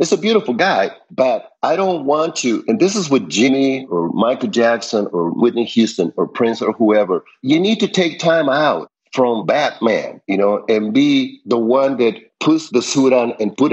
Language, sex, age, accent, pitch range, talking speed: English, male, 50-69, American, 115-165 Hz, 195 wpm